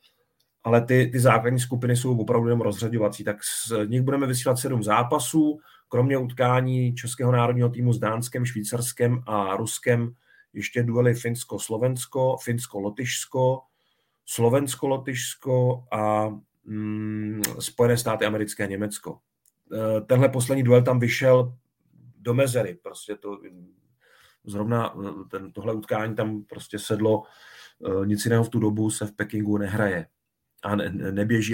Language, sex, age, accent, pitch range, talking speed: Czech, male, 40-59, native, 110-135 Hz, 120 wpm